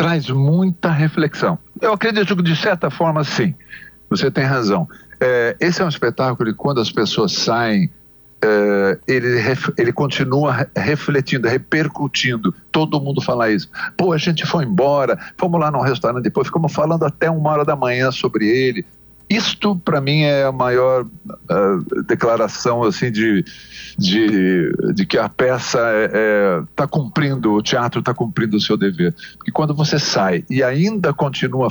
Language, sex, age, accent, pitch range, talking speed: Portuguese, male, 60-79, Brazilian, 105-165 Hz, 155 wpm